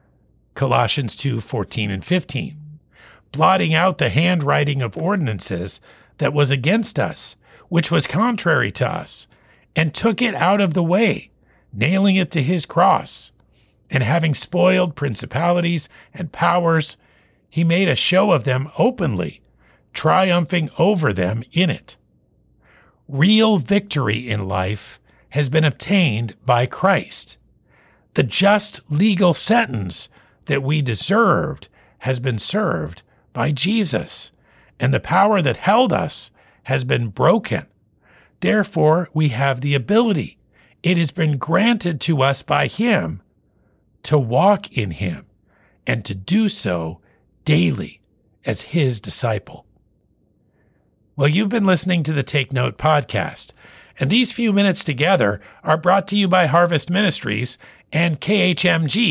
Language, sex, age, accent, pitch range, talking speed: English, male, 50-69, American, 125-185 Hz, 130 wpm